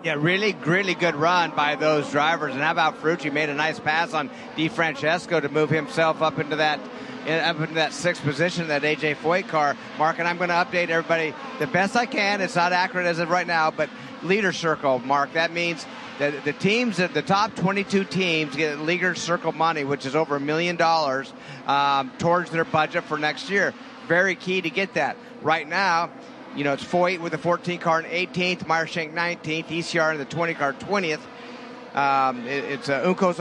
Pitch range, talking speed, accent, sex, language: 150-180 Hz, 200 wpm, American, male, English